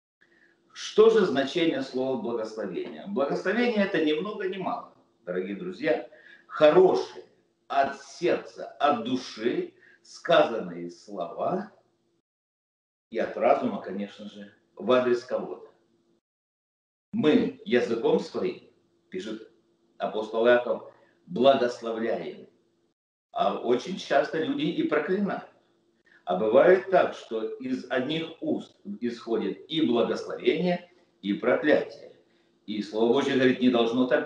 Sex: male